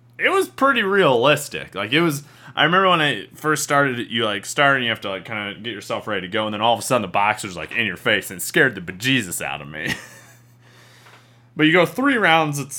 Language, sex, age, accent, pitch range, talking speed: English, male, 20-39, American, 100-145 Hz, 250 wpm